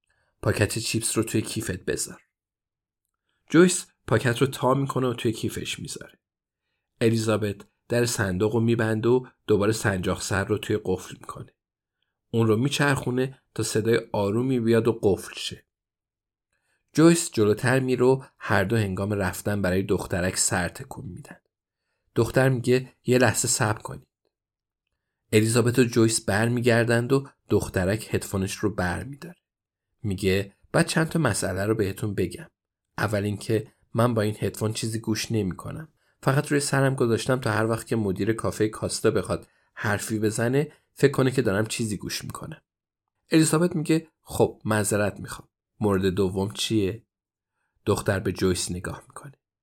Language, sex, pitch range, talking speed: Persian, male, 100-125 Hz, 140 wpm